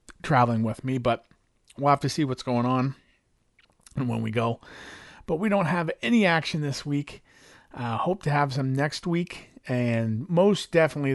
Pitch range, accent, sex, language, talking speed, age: 115-155 Hz, American, male, English, 180 wpm, 40-59